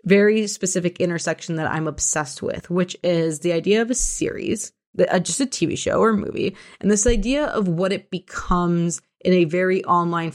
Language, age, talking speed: English, 20-39, 190 wpm